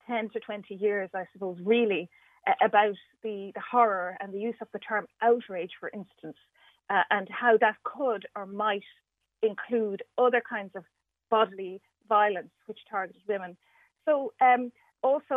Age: 30-49